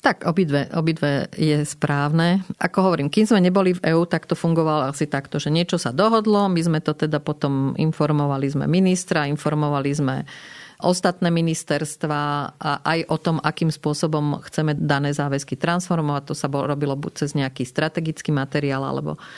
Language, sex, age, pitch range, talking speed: Slovak, female, 40-59, 145-165 Hz, 165 wpm